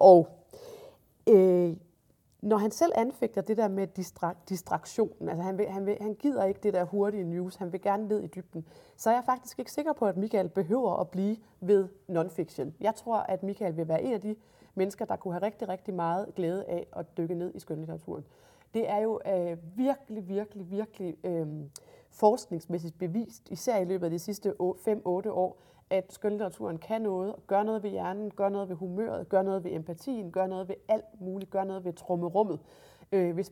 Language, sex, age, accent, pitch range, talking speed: Danish, female, 30-49, native, 180-220 Hz, 185 wpm